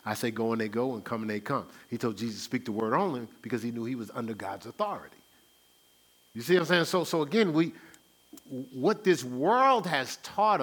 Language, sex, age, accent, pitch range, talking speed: English, male, 40-59, American, 105-170 Hz, 230 wpm